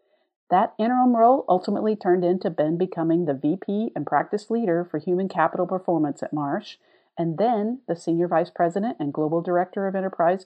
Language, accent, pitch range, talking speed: English, American, 160-225 Hz, 170 wpm